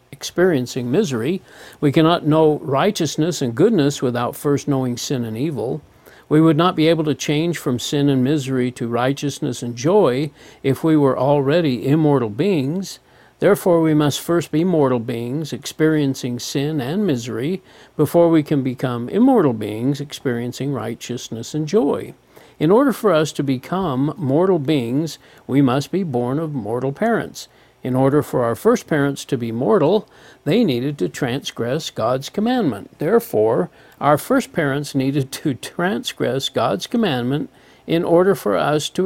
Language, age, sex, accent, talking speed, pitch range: English, 50-69, male, American, 155 wpm, 130-165 Hz